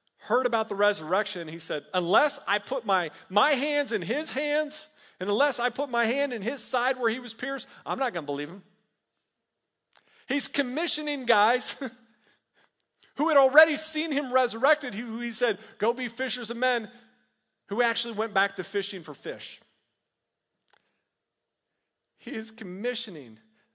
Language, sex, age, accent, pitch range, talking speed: English, male, 40-59, American, 175-245 Hz, 155 wpm